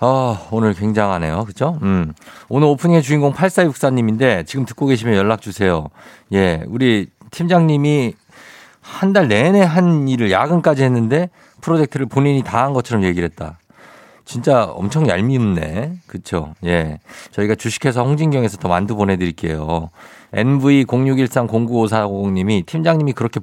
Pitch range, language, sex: 95-135 Hz, Korean, male